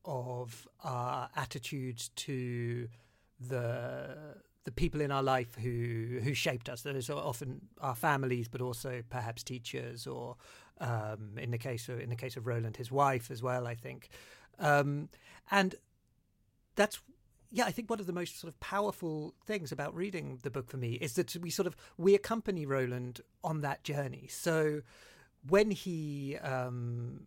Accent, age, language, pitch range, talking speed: British, 40-59, English, 125-185 Hz, 165 wpm